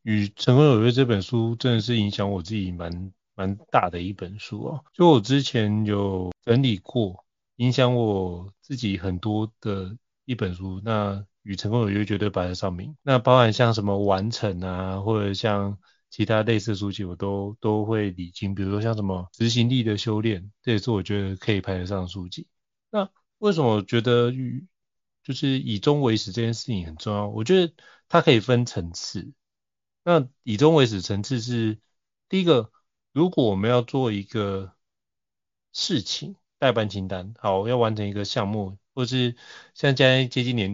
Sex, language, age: male, Chinese, 30-49